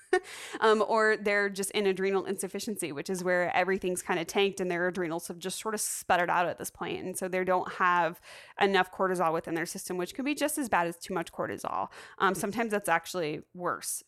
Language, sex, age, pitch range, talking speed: English, female, 20-39, 180-215 Hz, 215 wpm